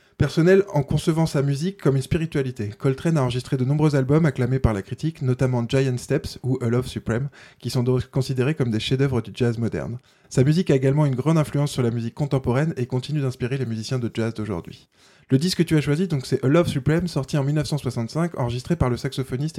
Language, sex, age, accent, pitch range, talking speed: French, male, 20-39, French, 125-150 Hz, 225 wpm